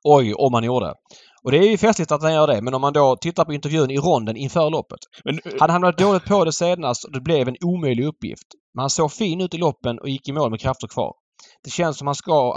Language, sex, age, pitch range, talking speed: Swedish, male, 20-39, 110-145 Hz, 265 wpm